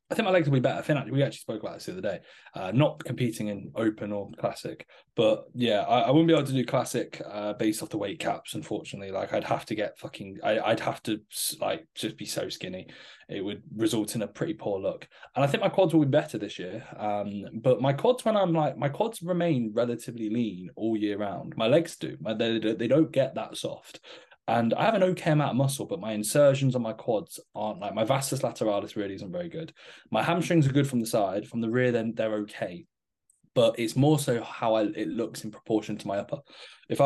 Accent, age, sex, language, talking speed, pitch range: British, 10-29, male, English, 235 wpm, 105-140 Hz